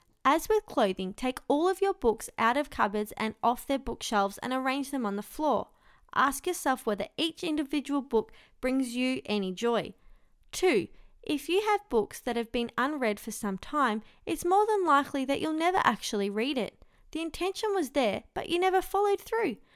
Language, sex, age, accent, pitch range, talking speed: English, female, 20-39, Australian, 220-315 Hz, 190 wpm